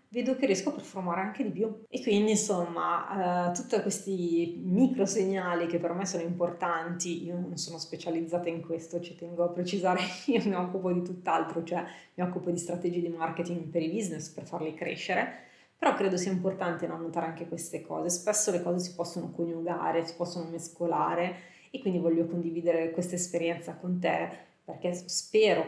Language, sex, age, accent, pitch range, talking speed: Italian, female, 30-49, native, 170-190 Hz, 180 wpm